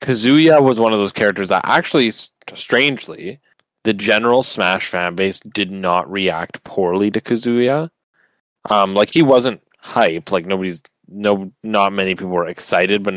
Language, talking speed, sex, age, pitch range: English, 155 wpm, male, 20-39, 90-110 Hz